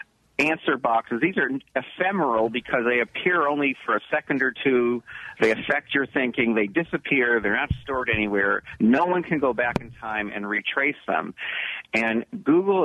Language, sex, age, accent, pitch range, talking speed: English, male, 50-69, American, 115-170 Hz, 175 wpm